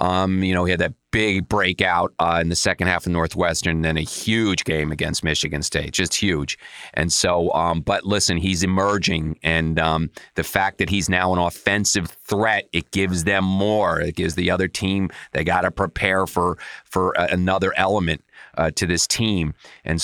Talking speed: 195 wpm